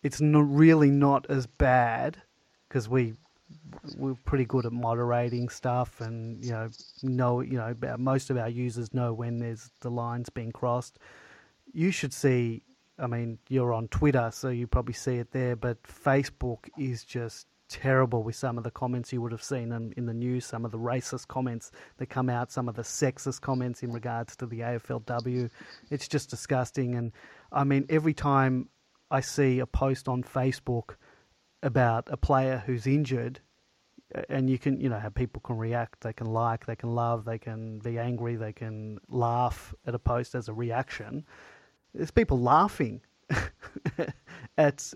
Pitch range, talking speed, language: 120-135 Hz, 175 wpm, English